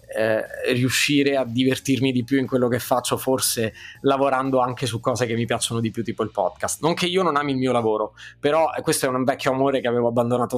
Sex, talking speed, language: male, 225 wpm, Italian